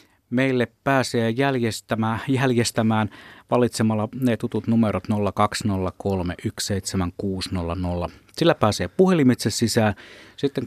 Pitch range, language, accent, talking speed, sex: 100-125 Hz, Finnish, native, 80 wpm, male